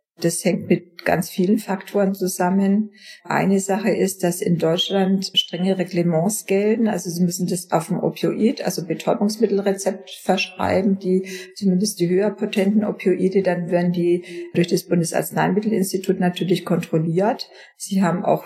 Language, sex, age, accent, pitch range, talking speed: German, female, 50-69, German, 170-195 Hz, 135 wpm